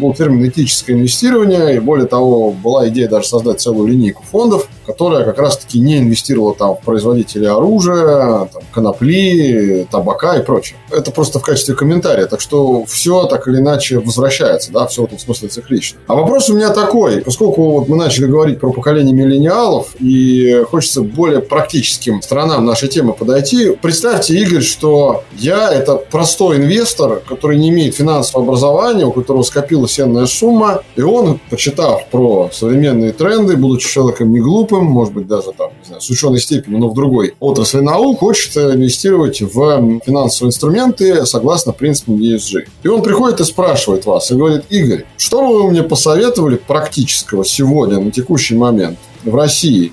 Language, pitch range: Russian, 120-160 Hz